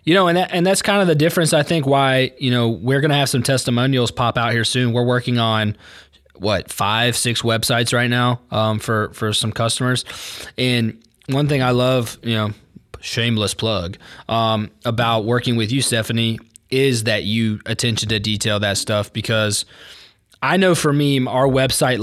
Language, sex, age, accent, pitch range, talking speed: English, male, 20-39, American, 110-130 Hz, 190 wpm